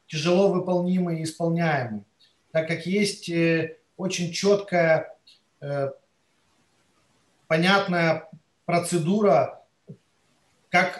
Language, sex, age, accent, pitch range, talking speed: Ukrainian, male, 30-49, native, 155-185 Hz, 60 wpm